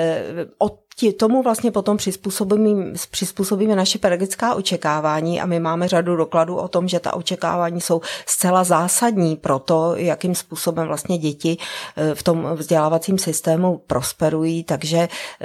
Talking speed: 130 wpm